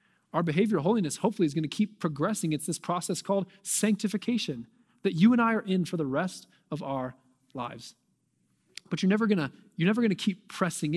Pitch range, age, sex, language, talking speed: 150-190 Hz, 20-39, male, English, 180 wpm